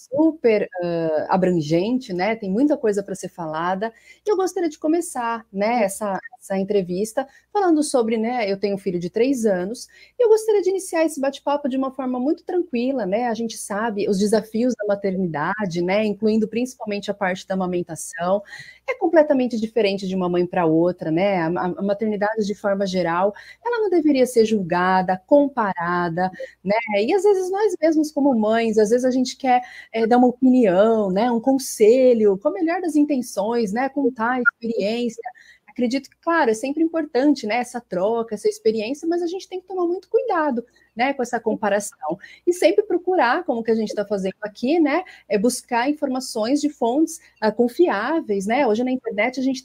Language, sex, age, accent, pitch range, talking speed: Portuguese, female, 30-49, Brazilian, 205-300 Hz, 185 wpm